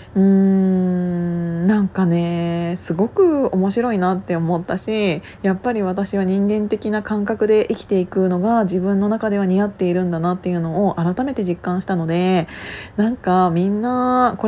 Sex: female